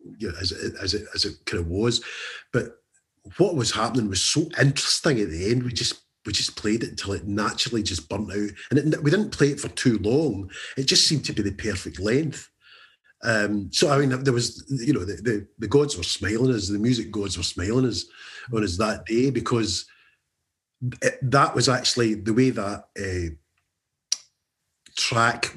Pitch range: 100-130 Hz